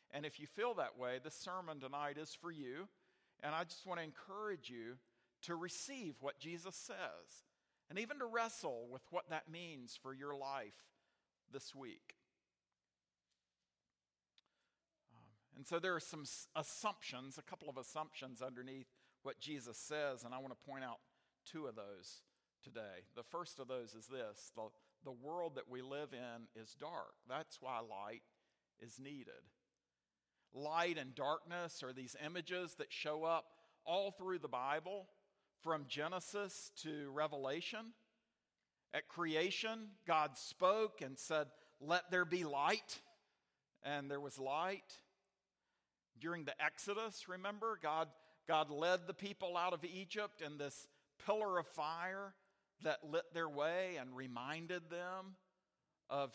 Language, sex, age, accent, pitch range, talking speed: English, male, 50-69, American, 135-180 Hz, 145 wpm